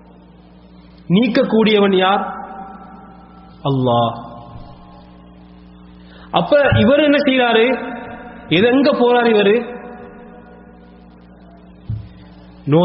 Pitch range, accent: 145-245 Hz, Indian